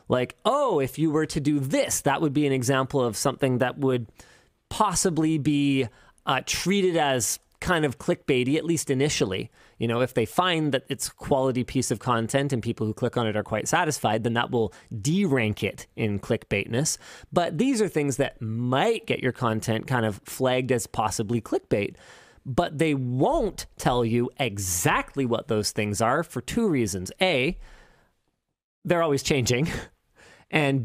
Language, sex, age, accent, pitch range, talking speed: English, male, 30-49, American, 120-160 Hz, 175 wpm